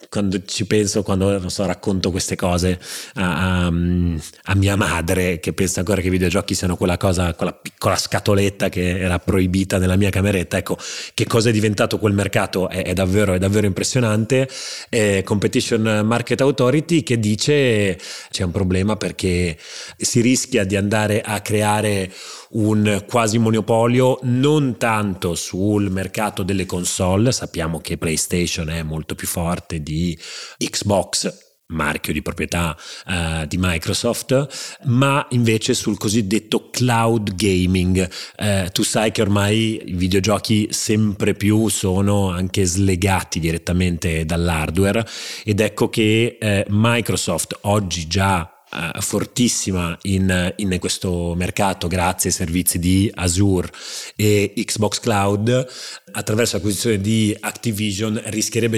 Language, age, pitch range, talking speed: Italian, 30-49, 90-110 Hz, 130 wpm